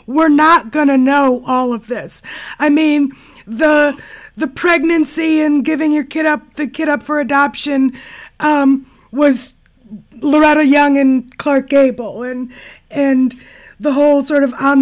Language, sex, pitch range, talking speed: English, female, 265-305 Hz, 145 wpm